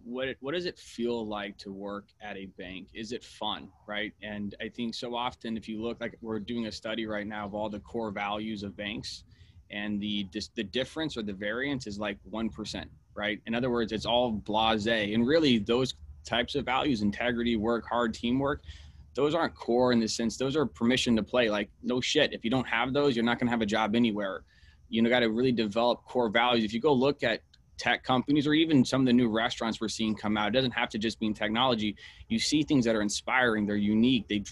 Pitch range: 105-120 Hz